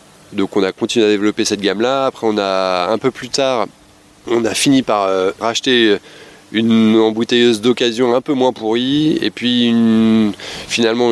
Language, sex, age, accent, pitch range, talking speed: French, male, 20-39, French, 100-115 Hz, 180 wpm